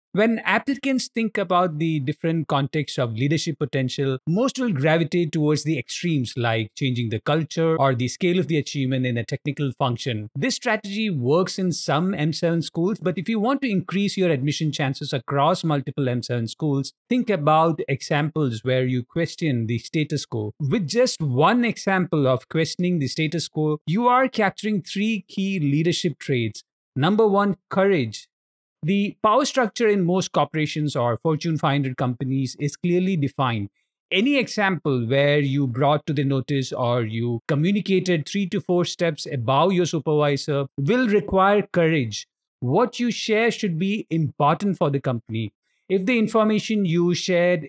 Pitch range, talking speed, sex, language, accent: 140-190 Hz, 160 wpm, male, English, Indian